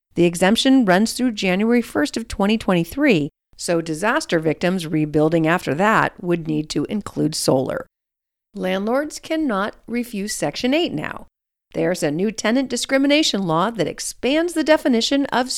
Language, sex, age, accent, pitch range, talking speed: English, female, 40-59, American, 165-255 Hz, 140 wpm